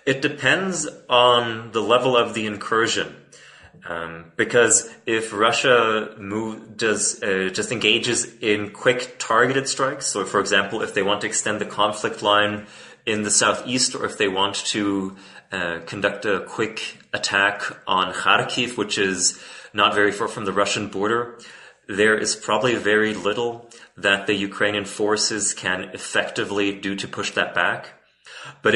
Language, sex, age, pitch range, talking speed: English, male, 30-49, 100-110 Hz, 150 wpm